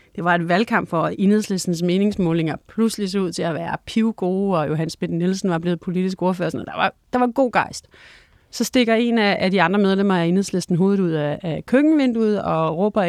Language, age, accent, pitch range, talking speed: Danish, 40-59, native, 175-215 Hz, 200 wpm